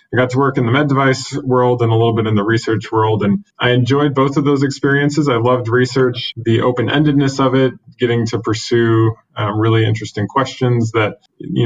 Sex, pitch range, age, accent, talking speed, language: male, 110-130 Hz, 20-39, American, 205 wpm, English